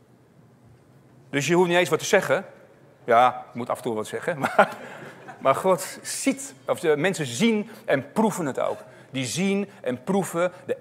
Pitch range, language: 130-180 Hz, Dutch